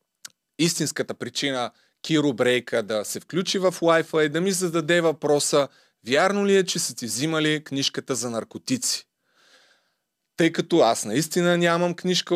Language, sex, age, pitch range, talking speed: Bulgarian, male, 30-49, 140-190 Hz, 145 wpm